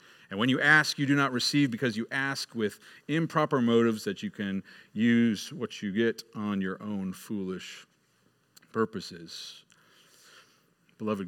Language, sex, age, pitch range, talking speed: English, male, 40-59, 105-135 Hz, 145 wpm